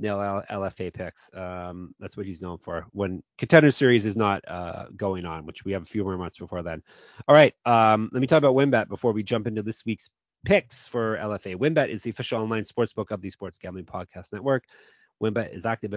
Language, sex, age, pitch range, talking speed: English, male, 30-49, 100-130 Hz, 220 wpm